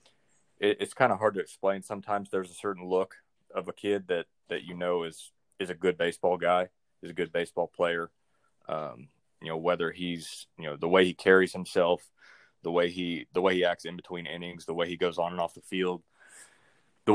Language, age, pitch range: English, 20-39, 85-95 Hz